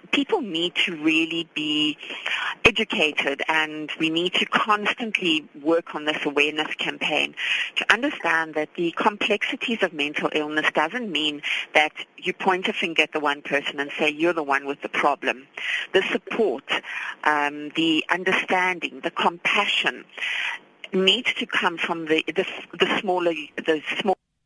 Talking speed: 145 wpm